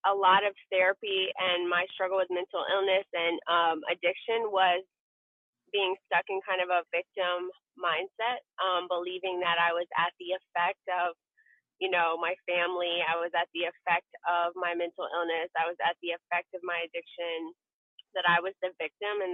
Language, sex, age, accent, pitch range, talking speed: English, female, 20-39, American, 175-195 Hz, 180 wpm